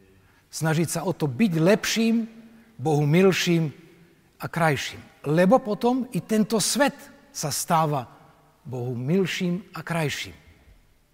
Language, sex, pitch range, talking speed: Slovak, male, 150-205 Hz, 115 wpm